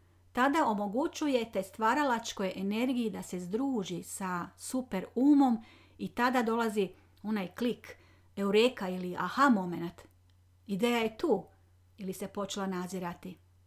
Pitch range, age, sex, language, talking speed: 165-225 Hz, 40-59, female, Croatian, 115 wpm